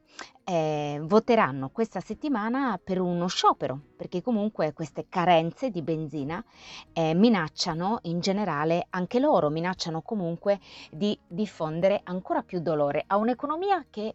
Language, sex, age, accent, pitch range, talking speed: Italian, female, 30-49, native, 150-215 Hz, 125 wpm